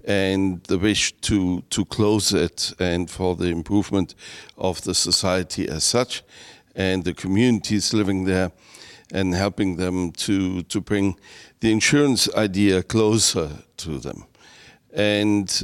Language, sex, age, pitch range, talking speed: English, male, 60-79, 90-105 Hz, 130 wpm